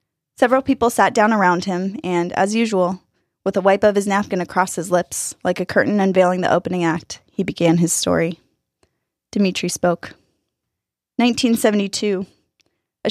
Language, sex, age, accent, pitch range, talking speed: English, female, 10-29, American, 180-225 Hz, 150 wpm